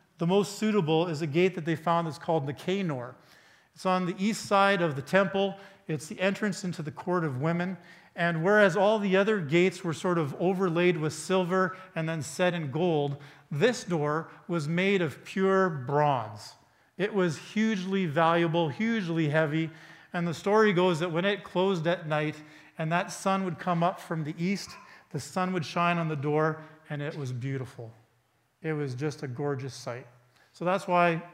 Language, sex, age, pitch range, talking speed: English, male, 40-59, 155-185 Hz, 190 wpm